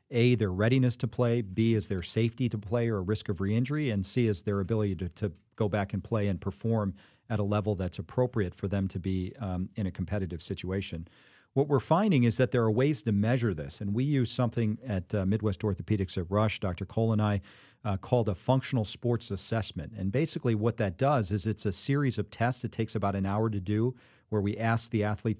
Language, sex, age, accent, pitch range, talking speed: English, male, 40-59, American, 100-120 Hz, 225 wpm